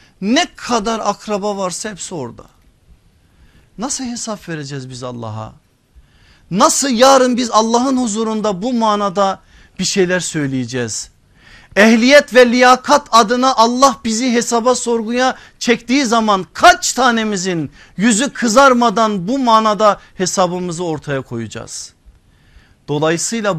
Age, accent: 50-69, native